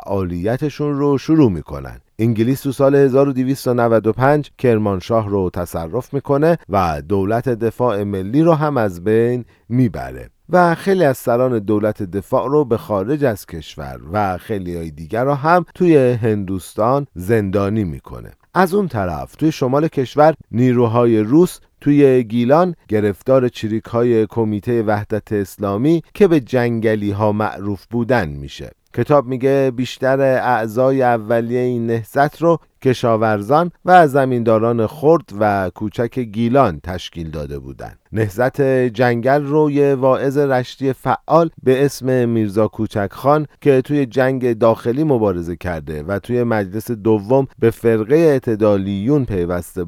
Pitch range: 105-135 Hz